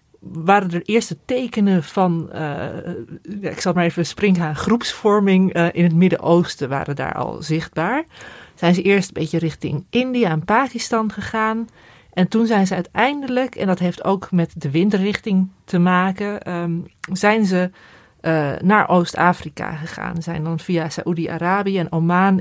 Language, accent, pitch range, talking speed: Dutch, Dutch, 160-190 Hz, 155 wpm